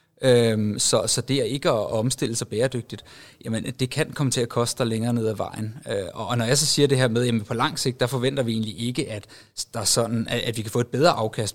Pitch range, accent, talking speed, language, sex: 110-130 Hz, native, 245 wpm, Danish, male